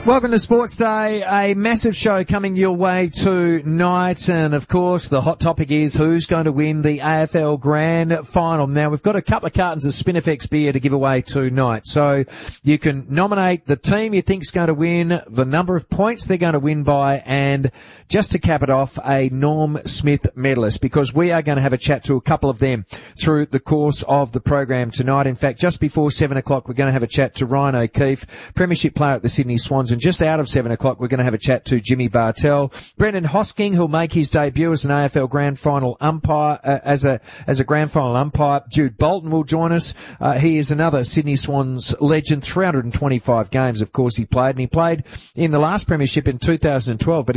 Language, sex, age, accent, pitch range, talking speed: English, male, 40-59, Australian, 135-165 Hz, 220 wpm